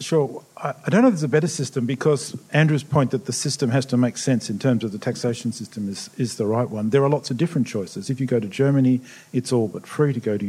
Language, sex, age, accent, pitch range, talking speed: English, male, 50-69, Australian, 110-135 Hz, 280 wpm